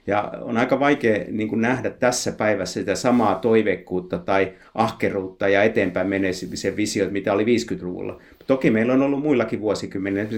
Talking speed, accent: 150 wpm, native